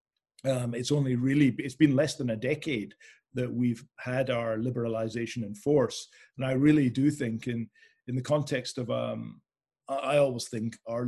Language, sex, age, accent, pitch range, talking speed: English, male, 40-59, British, 115-130 Hz, 175 wpm